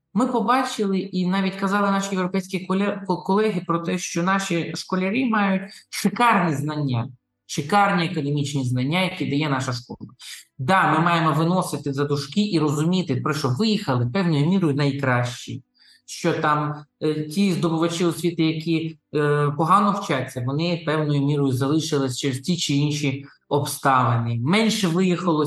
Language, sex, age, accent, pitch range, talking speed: Ukrainian, male, 20-39, native, 135-175 Hz, 140 wpm